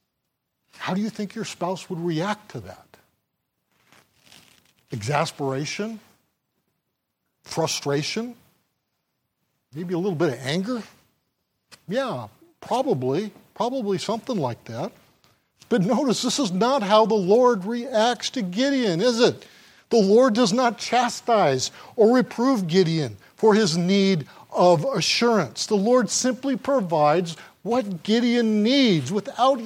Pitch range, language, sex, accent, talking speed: 155-235 Hz, English, male, American, 115 wpm